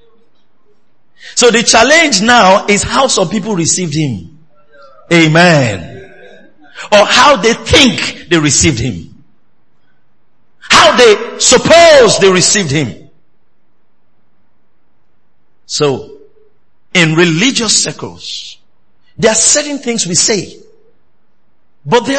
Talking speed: 95 wpm